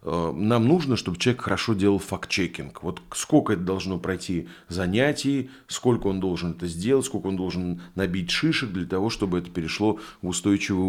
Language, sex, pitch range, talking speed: Russian, male, 95-120 Hz, 165 wpm